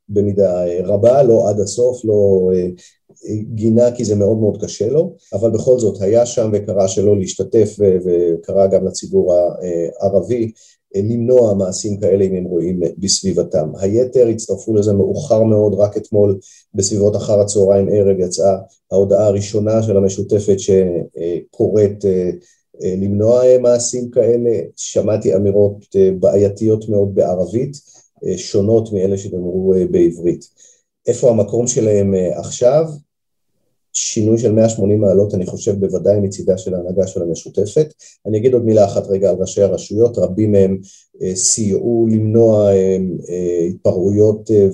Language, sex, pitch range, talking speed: Hebrew, male, 95-115 Hz, 120 wpm